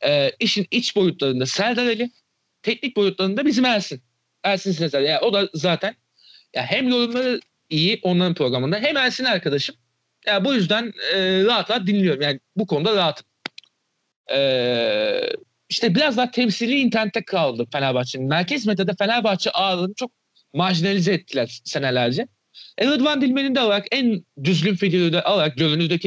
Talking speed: 140 wpm